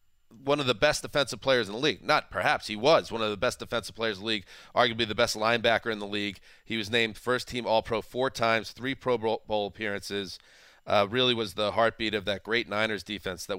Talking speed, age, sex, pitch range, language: 225 wpm, 30-49, male, 100-120 Hz, English